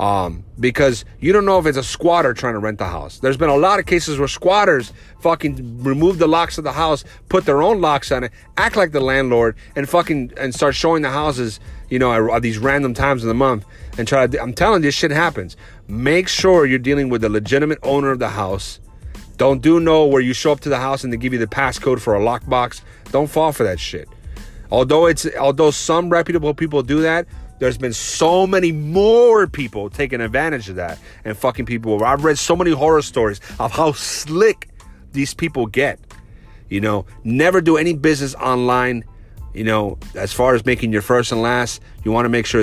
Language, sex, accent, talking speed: English, male, American, 220 wpm